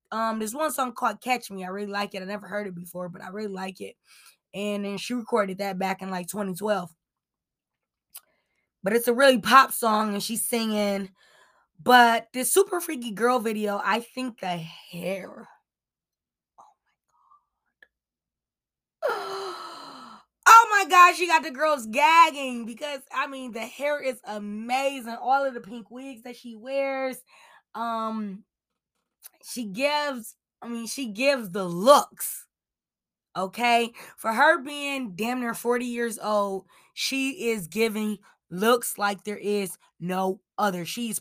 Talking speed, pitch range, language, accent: 150 wpm, 210-270 Hz, English, American